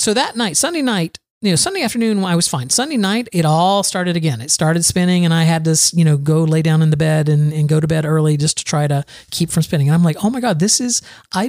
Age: 40-59